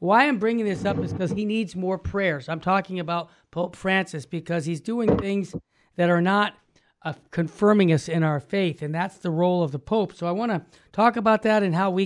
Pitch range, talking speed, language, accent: 170-210 Hz, 230 wpm, English, American